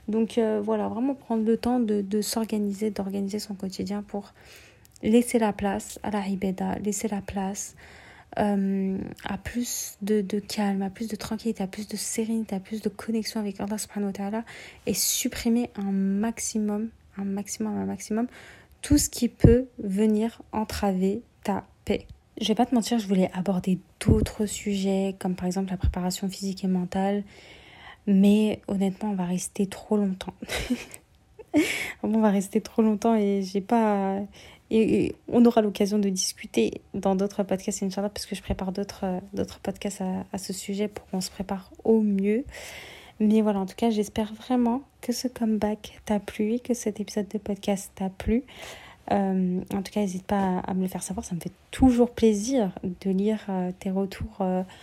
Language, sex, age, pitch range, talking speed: French, female, 30-49, 195-225 Hz, 175 wpm